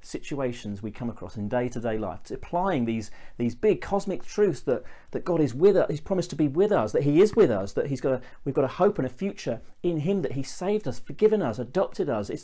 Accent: British